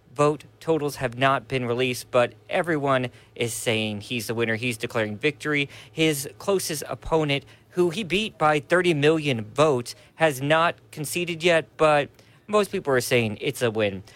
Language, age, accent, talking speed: English, 40-59, American, 160 wpm